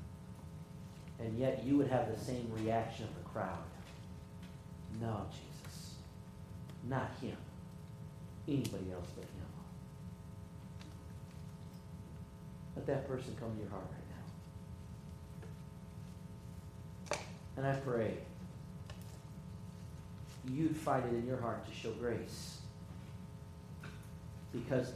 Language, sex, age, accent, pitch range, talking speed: English, male, 50-69, American, 90-130 Hz, 100 wpm